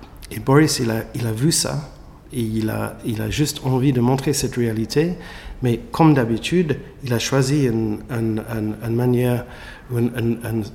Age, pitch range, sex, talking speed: 50-69, 115-145 Hz, male, 185 wpm